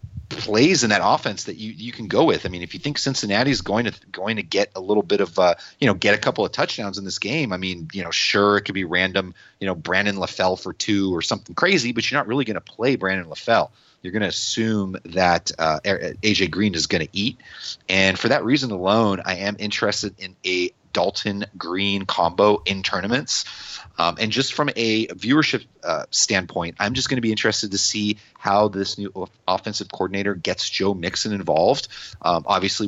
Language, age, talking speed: English, 30-49, 215 wpm